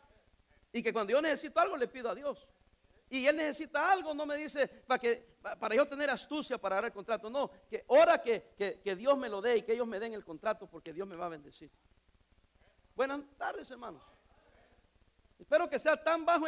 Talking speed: 210 wpm